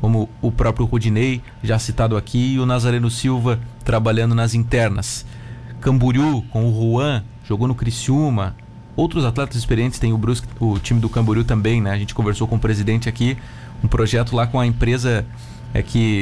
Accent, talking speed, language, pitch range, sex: Brazilian, 180 wpm, Portuguese, 110-125 Hz, male